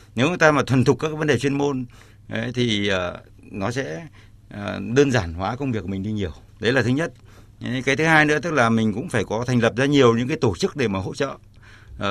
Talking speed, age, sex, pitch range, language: 270 wpm, 60-79, male, 105-140 Hz, Vietnamese